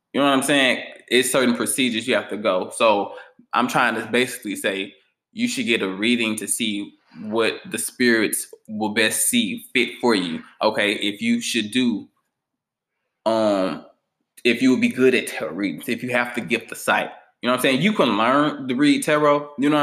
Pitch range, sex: 115-145 Hz, male